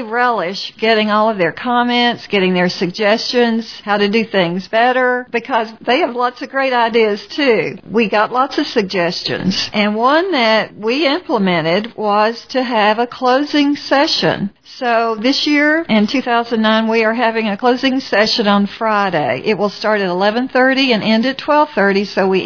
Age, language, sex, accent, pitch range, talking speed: 50-69, English, female, American, 195-240 Hz, 165 wpm